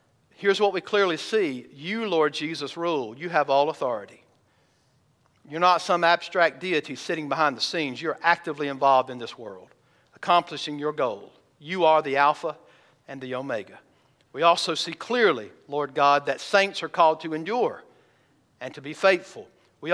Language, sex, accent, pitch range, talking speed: English, male, American, 140-175 Hz, 165 wpm